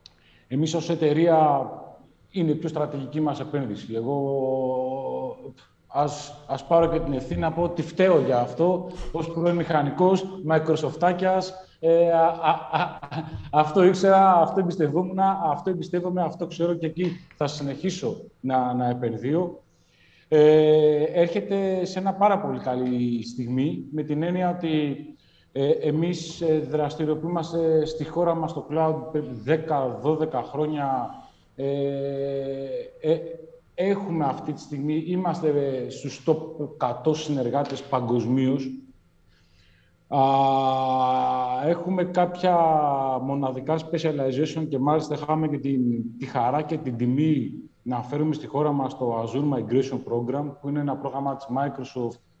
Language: Greek